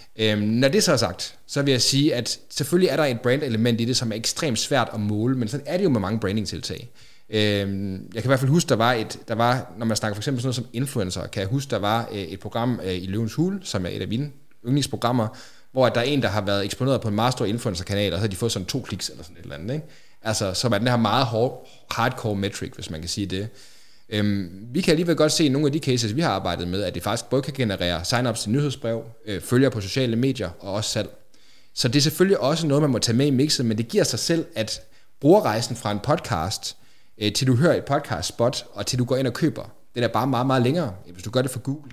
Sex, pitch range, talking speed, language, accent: male, 105-135 Hz, 260 wpm, Danish, native